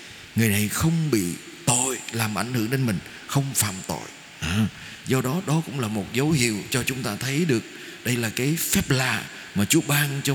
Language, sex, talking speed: Vietnamese, male, 205 wpm